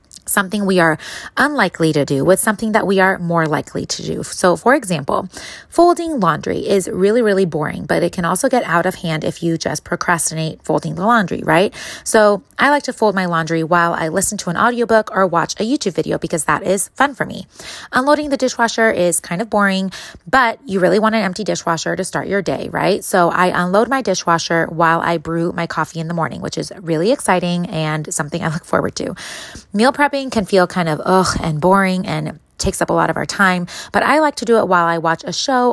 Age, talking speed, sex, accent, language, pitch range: 20-39, 225 wpm, female, American, English, 165-210 Hz